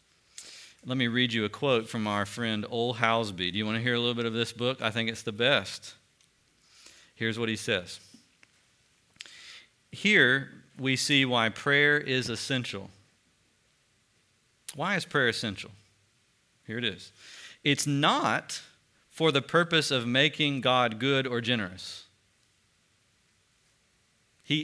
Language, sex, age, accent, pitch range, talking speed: English, male, 40-59, American, 110-155 Hz, 140 wpm